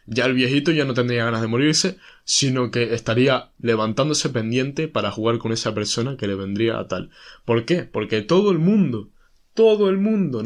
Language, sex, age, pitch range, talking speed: Spanish, male, 20-39, 115-165 Hz, 190 wpm